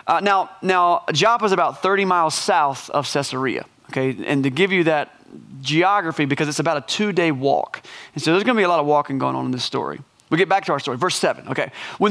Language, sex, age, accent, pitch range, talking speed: English, male, 30-49, American, 145-195 Hz, 235 wpm